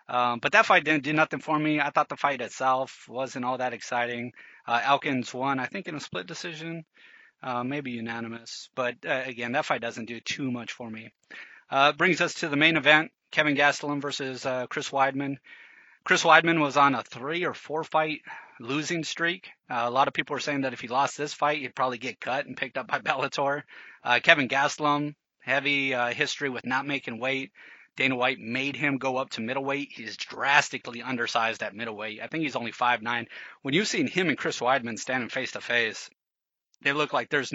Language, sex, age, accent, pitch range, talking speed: English, male, 30-49, American, 125-150 Hz, 205 wpm